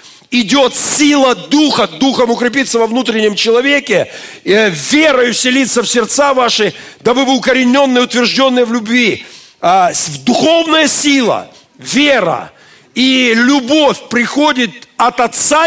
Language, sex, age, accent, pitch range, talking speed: Russian, male, 50-69, native, 180-250 Hz, 105 wpm